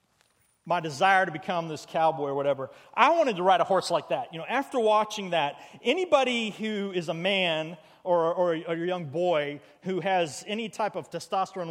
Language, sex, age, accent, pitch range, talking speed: English, male, 40-59, American, 155-190 Hz, 200 wpm